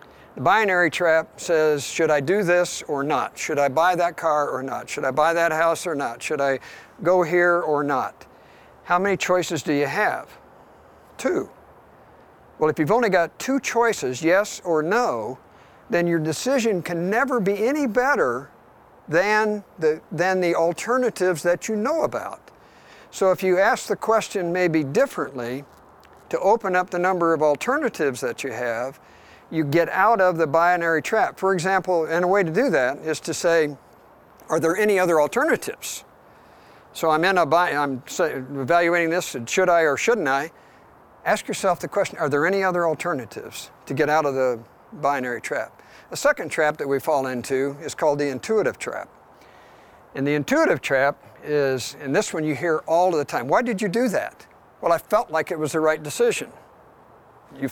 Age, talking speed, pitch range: 50-69, 180 wpm, 155-190 Hz